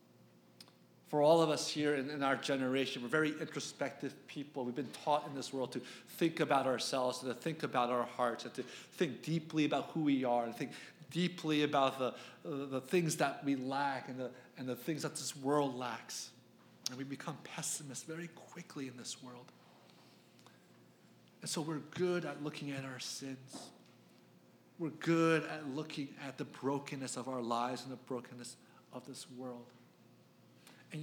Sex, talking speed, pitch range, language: male, 175 wpm, 115-150 Hz, English